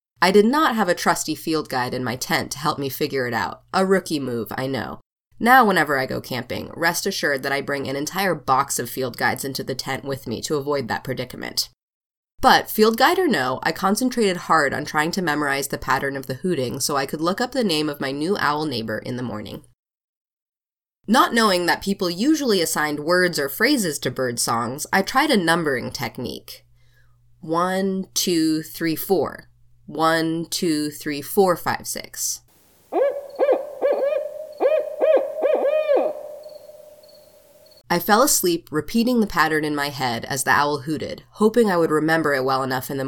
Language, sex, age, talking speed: English, female, 20-39, 180 wpm